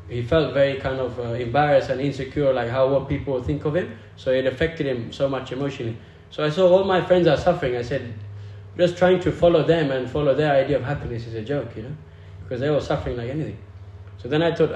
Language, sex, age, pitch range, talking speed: English, male, 20-39, 105-155 Hz, 245 wpm